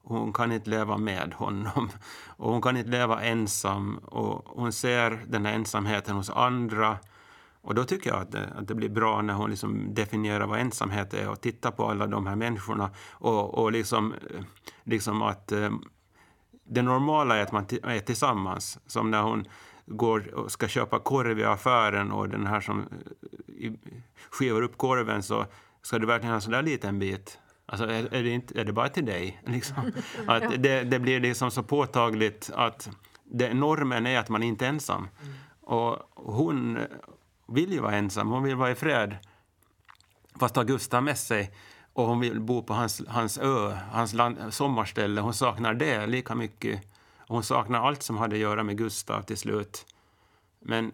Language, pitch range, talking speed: Swedish, 105-125 Hz, 175 wpm